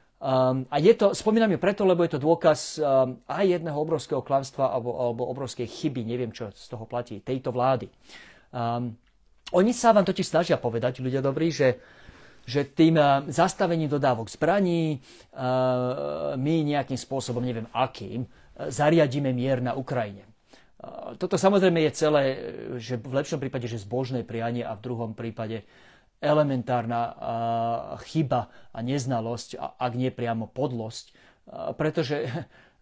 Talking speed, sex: 150 wpm, male